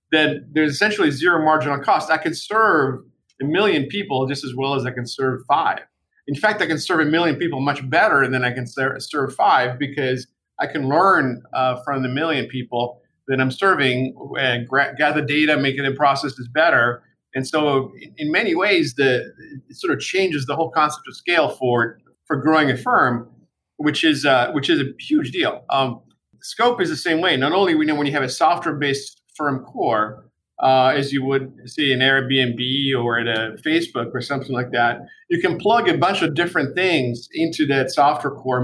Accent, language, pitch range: American, English, 130-155 Hz